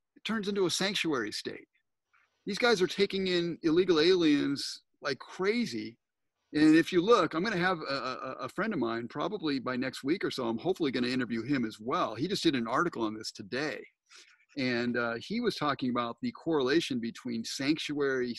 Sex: male